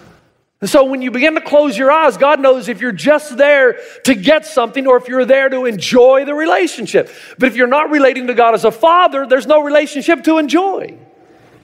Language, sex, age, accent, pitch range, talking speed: English, male, 40-59, American, 220-290 Hz, 210 wpm